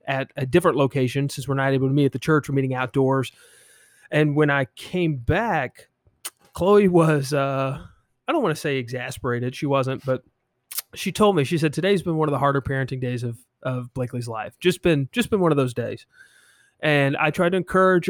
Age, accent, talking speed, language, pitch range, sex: 30-49, American, 210 wpm, English, 130-155 Hz, male